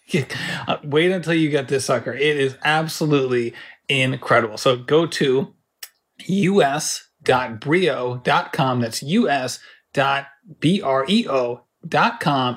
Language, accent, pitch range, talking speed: English, American, 135-175 Hz, 75 wpm